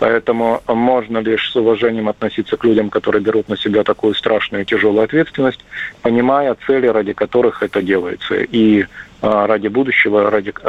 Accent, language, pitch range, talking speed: native, Russian, 115-135 Hz, 150 wpm